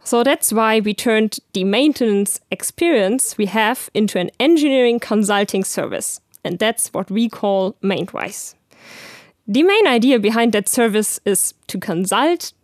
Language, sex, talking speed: English, female, 140 wpm